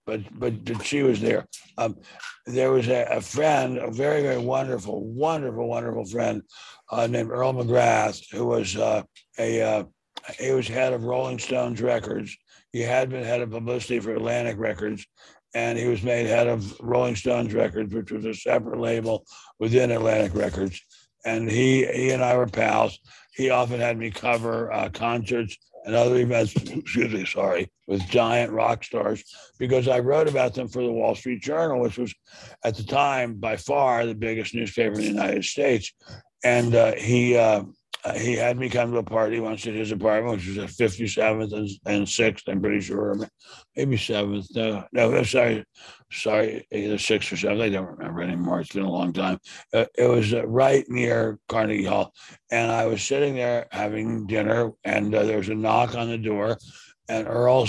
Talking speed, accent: 185 wpm, American